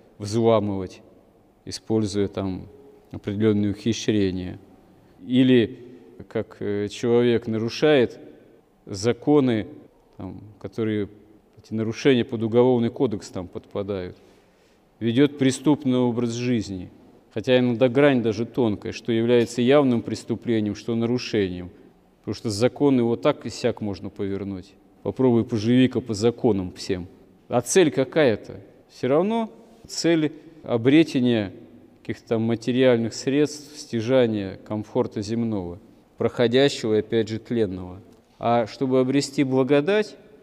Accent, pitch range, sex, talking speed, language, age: native, 105-130 Hz, male, 105 wpm, Russian, 40-59